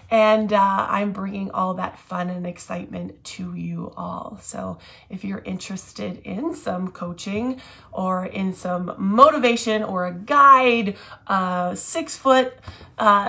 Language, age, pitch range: English, 30-49, 190-240 Hz